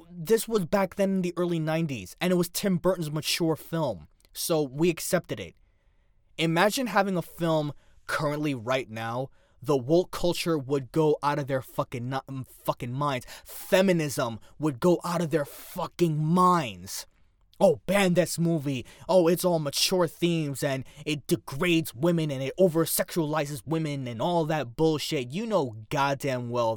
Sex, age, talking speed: male, 20-39, 160 wpm